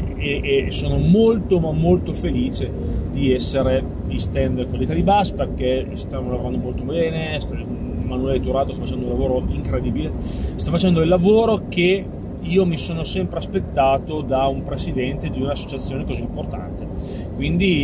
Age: 30-49